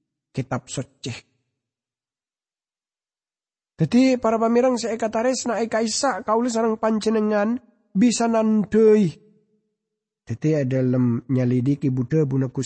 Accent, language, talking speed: Indonesian, English, 90 wpm